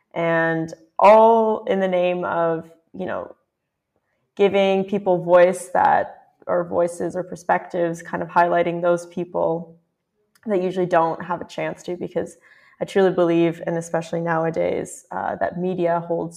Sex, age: female, 20-39